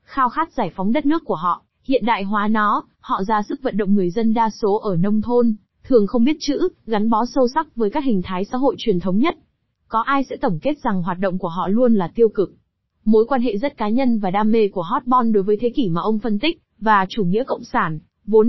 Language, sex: Vietnamese, female